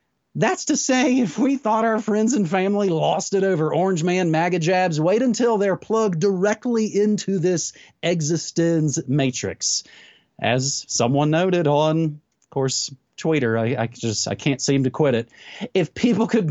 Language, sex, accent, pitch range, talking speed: English, male, American, 155-220 Hz, 165 wpm